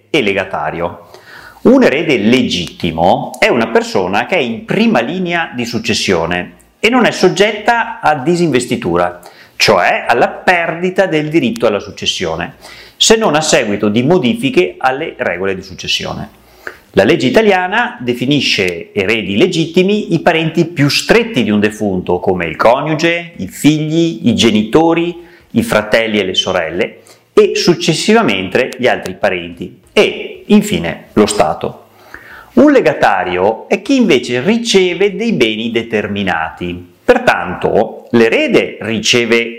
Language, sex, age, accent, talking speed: Italian, male, 30-49, native, 125 wpm